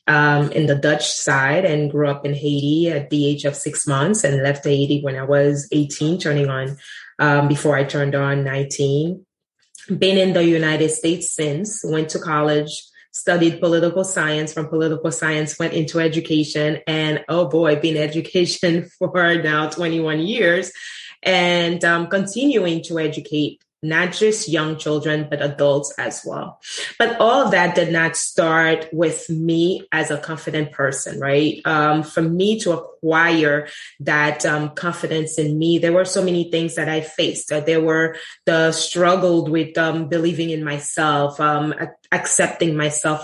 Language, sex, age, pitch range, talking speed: English, female, 20-39, 150-170 Hz, 160 wpm